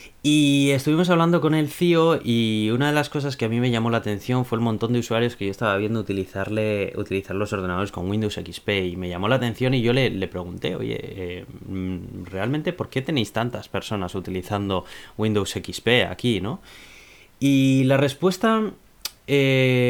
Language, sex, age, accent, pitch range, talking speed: Spanish, male, 20-39, Spanish, 105-135 Hz, 185 wpm